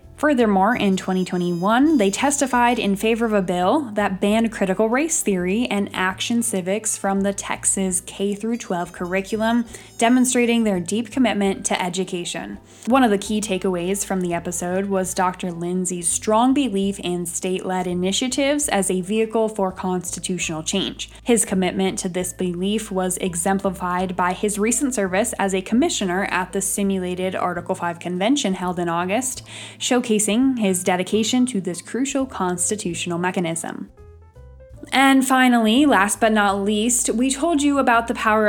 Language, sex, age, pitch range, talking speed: English, female, 10-29, 185-230 Hz, 150 wpm